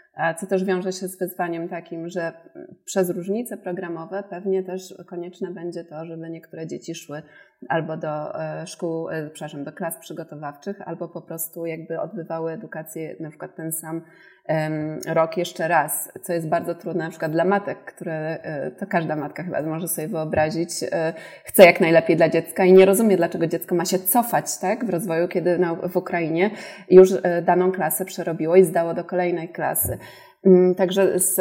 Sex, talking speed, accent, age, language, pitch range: female, 165 wpm, native, 30-49, Polish, 165-185 Hz